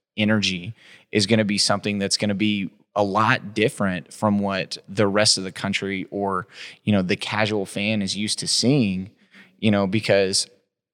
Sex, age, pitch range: male, 20-39, 100-110 Hz